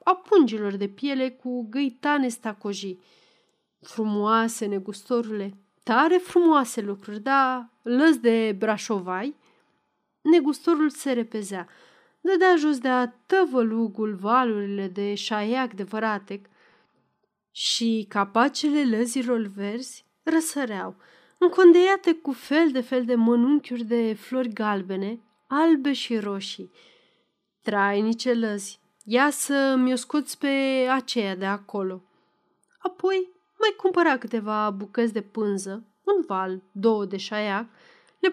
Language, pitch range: Romanian, 205-280 Hz